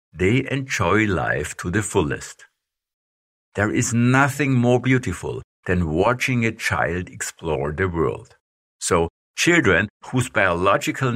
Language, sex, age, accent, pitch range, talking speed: English, male, 60-79, German, 85-125 Hz, 120 wpm